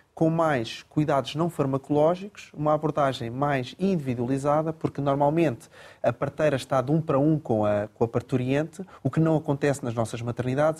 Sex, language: male, Portuguese